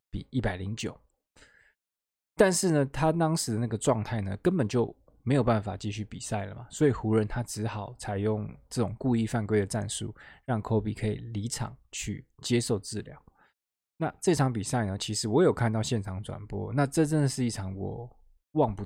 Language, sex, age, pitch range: Chinese, male, 20-39, 105-135 Hz